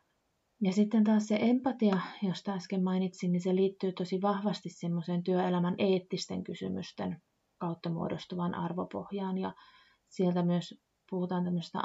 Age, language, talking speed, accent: 30-49, Finnish, 115 wpm, native